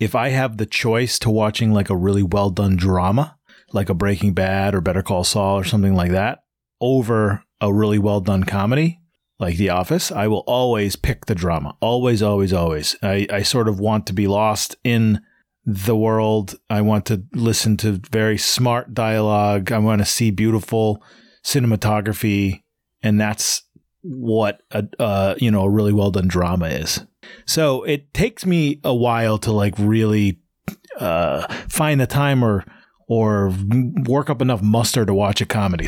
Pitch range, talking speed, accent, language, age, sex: 100-130 Hz, 170 wpm, American, English, 30-49, male